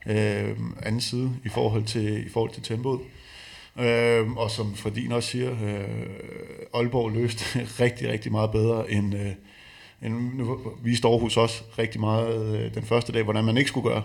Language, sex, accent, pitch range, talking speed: Danish, male, native, 110-125 Hz, 170 wpm